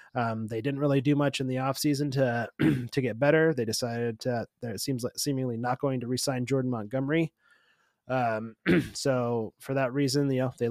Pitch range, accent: 115-140 Hz, American